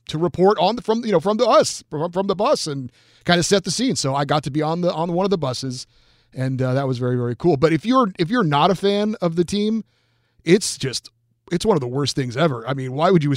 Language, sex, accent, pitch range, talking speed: English, male, American, 140-190 Hz, 285 wpm